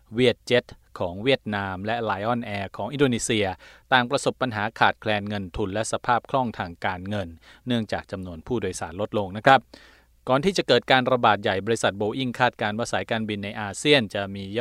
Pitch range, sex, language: 100-120 Hz, male, Thai